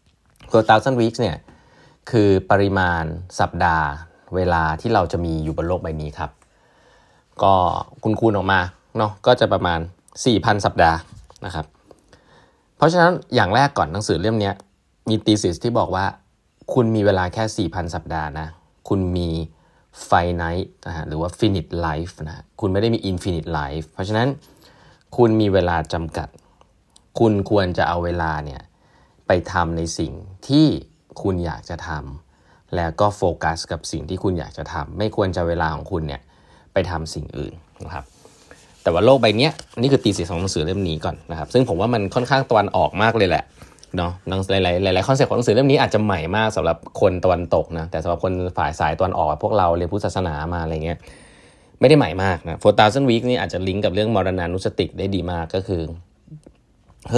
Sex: male